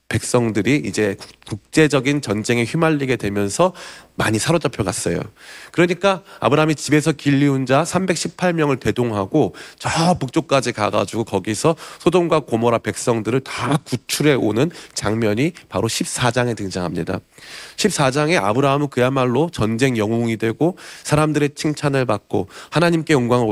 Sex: male